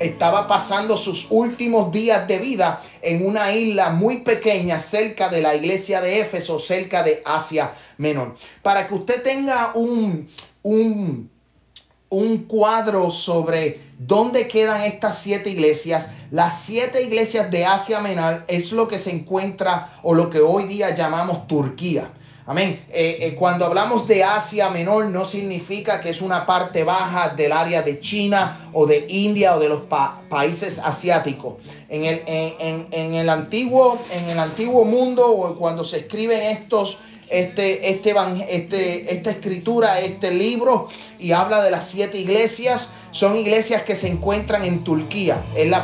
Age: 30-49